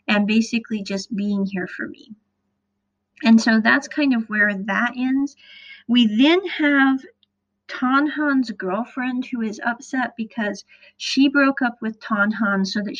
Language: English